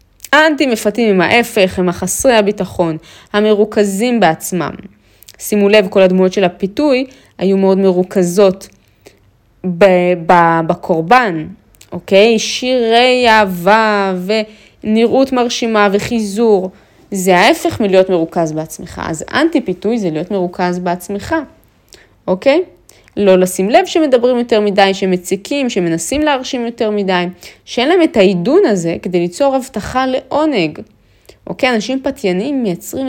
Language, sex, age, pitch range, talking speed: Hebrew, female, 20-39, 185-255 Hz, 110 wpm